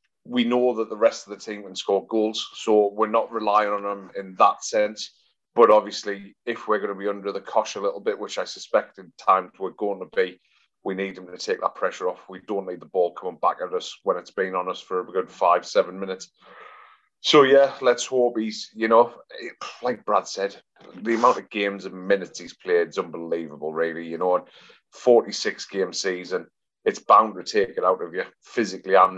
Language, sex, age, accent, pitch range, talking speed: English, male, 30-49, British, 100-130 Hz, 215 wpm